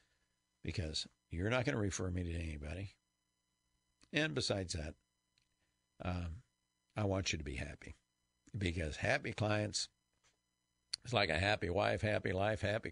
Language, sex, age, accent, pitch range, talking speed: English, male, 60-79, American, 85-110 Hz, 140 wpm